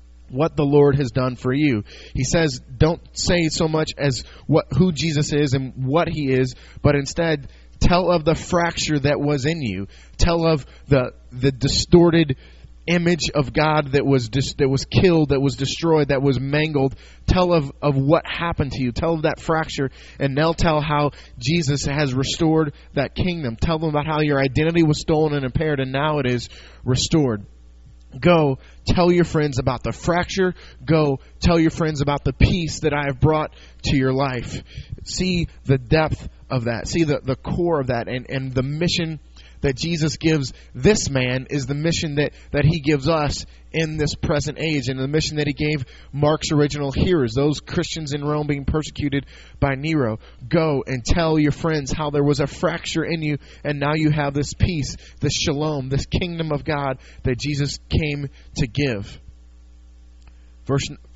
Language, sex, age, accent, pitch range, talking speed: English, male, 20-39, American, 130-160 Hz, 185 wpm